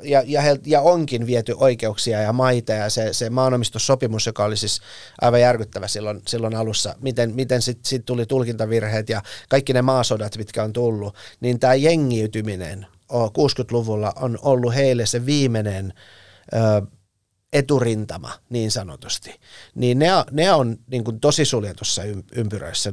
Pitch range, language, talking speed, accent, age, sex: 110-130 Hz, Finnish, 145 wpm, native, 30-49, male